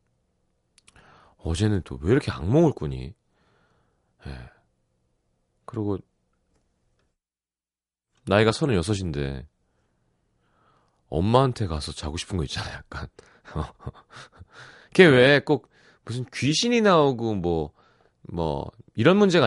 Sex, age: male, 40-59